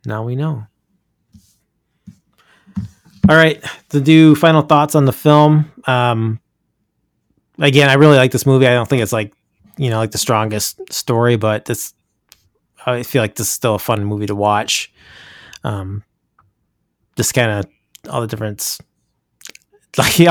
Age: 20-39